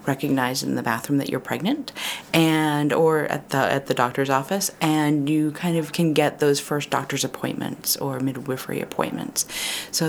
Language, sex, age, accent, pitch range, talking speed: English, female, 30-49, American, 135-160 Hz, 175 wpm